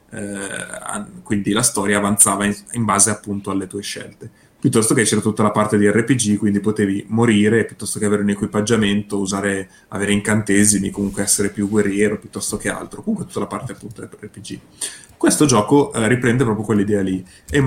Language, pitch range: Italian, 100-120 Hz